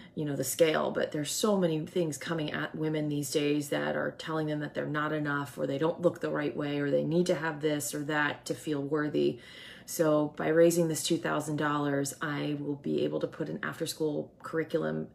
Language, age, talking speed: English, 30-49, 220 wpm